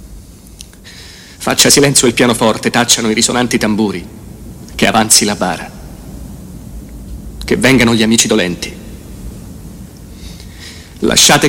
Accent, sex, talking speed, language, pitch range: native, male, 95 wpm, Italian, 85-115 Hz